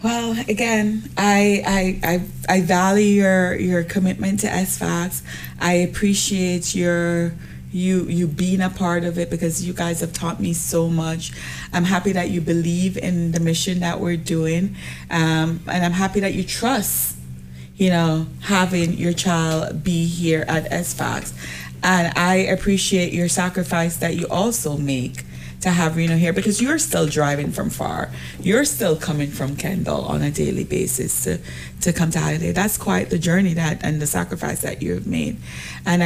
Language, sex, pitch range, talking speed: English, female, 155-185 Hz, 170 wpm